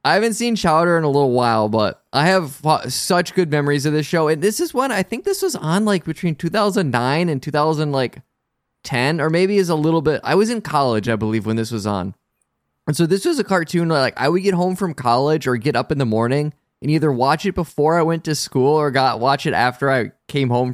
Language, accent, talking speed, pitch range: English, American, 245 wpm, 125-165 Hz